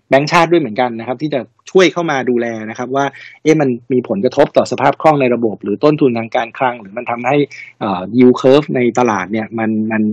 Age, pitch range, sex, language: 60-79, 115-145 Hz, male, Thai